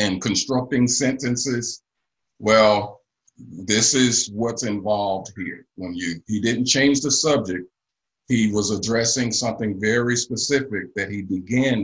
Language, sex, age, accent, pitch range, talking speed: English, male, 50-69, American, 100-130 Hz, 125 wpm